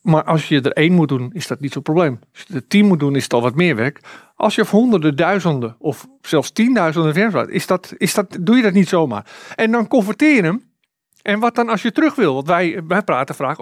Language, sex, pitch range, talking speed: Dutch, male, 160-215 Hz, 255 wpm